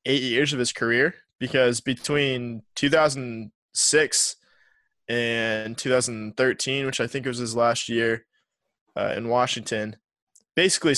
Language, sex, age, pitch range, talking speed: English, male, 20-39, 115-130 Hz, 140 wpm